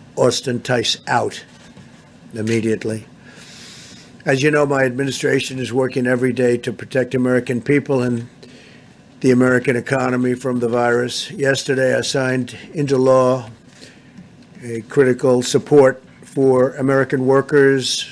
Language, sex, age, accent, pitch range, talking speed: English, male, 50-69, American, 125-135 Hz, 115 wpm